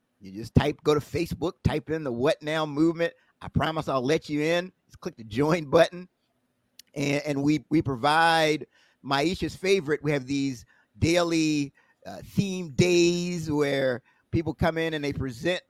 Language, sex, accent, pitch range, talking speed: English, male, American, 130-160 Hz, 170 wpm